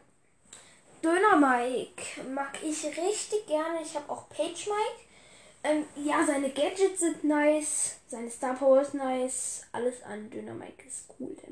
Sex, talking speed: female, 145 wpm